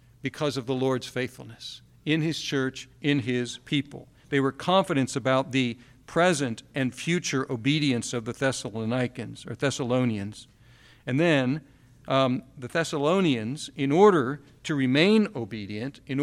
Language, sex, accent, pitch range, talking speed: English, male, American, 125-155 Hz, 130 wpm